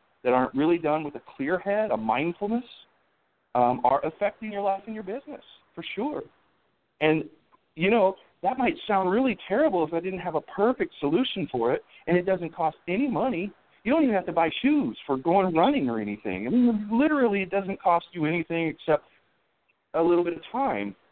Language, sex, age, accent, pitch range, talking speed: English, male, 50-69, American, 155-220 Hz, 195 wpm